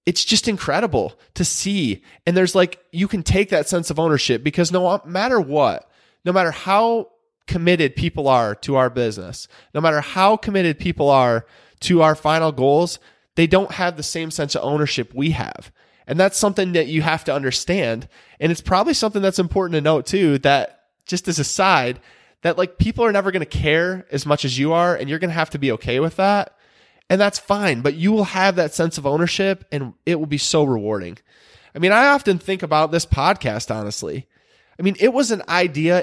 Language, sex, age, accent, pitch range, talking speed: English, male, 20-39, American, 150-200 Hz, 210 wpm